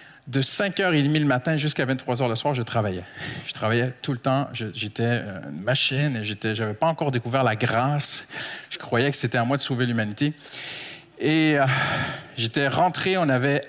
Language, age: French, 50-69